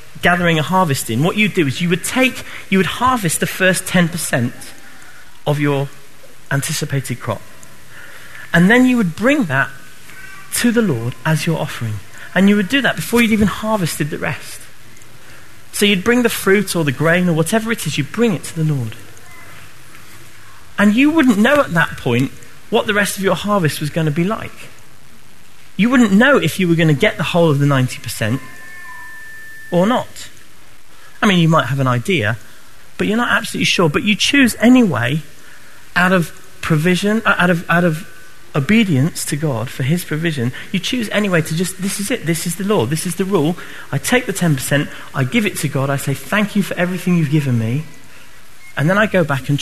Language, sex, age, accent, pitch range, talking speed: English, male, 30-49, British, 140-200 Hz, 200 wpm